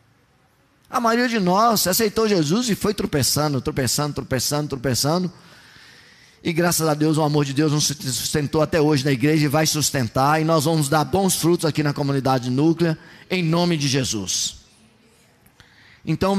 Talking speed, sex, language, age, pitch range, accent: 160 wpm, male, Portuguese, 20-39, 130-175 Hz, Brazilian